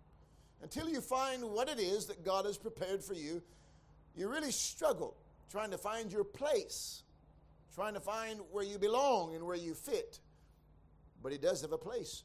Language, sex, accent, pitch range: English, male, American, 155-205 Hz